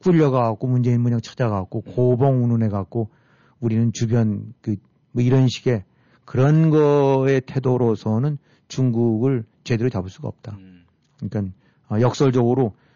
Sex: male